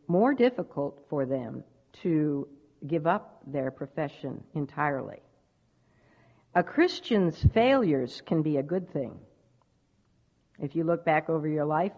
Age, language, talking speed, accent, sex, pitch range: 60-79, English, 125 wpm, American, female, 150-200 Hz